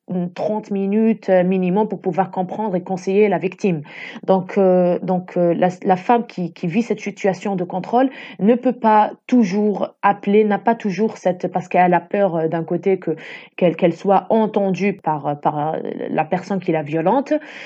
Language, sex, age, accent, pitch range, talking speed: French, female, 20-39, French, 185-230 Hz, 175 wpm